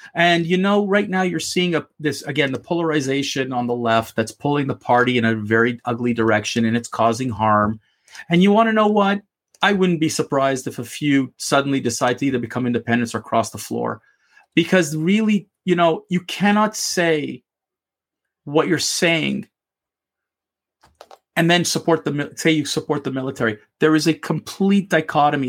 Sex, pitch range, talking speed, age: male, 135-175 Hz, 175 wpm, 40-59